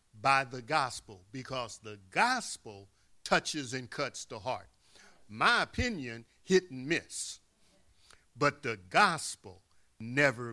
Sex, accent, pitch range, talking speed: male, American, 120-160 Hz, 115 wpm